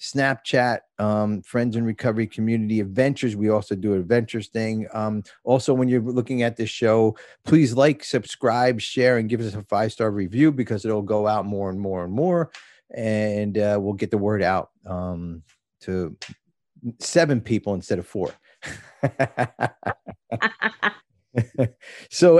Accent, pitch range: American, 100-130 Hz